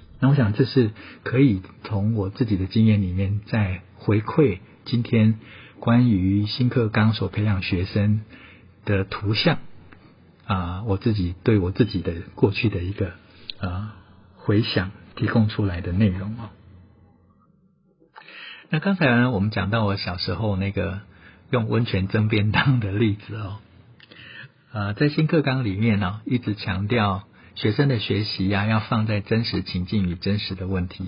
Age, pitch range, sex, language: 50-69, 100-120 Hz, male, Chinese